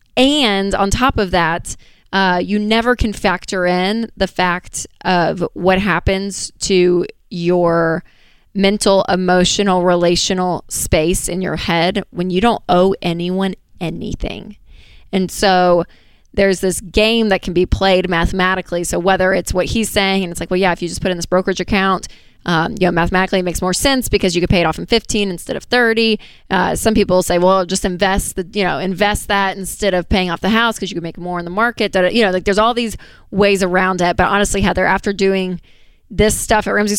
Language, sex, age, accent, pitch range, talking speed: English, female, 20-39, American, 180-205 Hz, 200 wpm